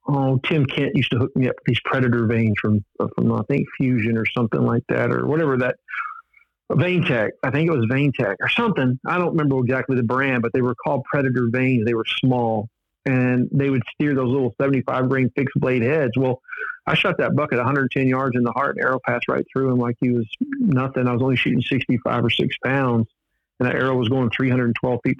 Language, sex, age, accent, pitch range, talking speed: English, male, 50-69, American, 125-140 Hz, 220 wpm